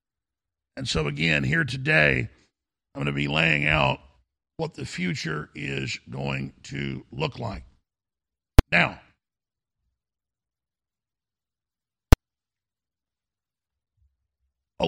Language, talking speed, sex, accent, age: English, 85 wpm, male, American, 50-69